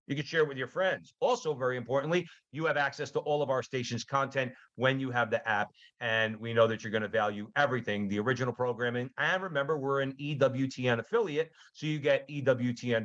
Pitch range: 115-140 Hz